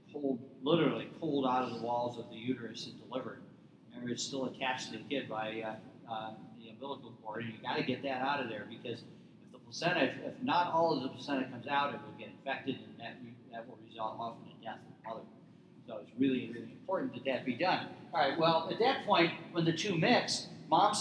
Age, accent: 50-69, American